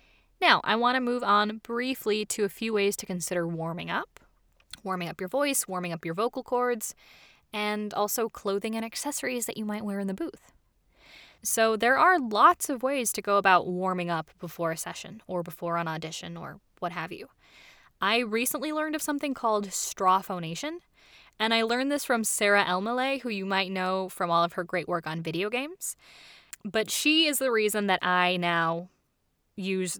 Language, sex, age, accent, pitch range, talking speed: English, female, 10-29, American, 180-235 Hz, 190 wpm